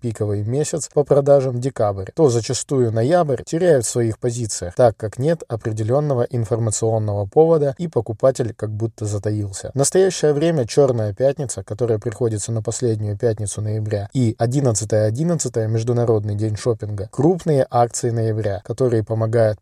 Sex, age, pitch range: male, 20-39, 110-135 Hz